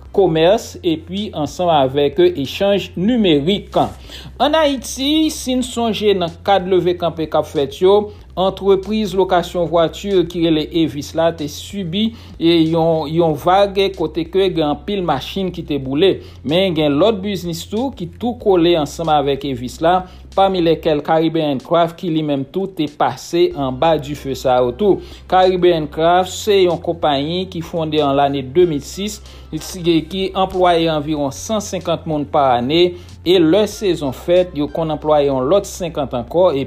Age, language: 60-79, English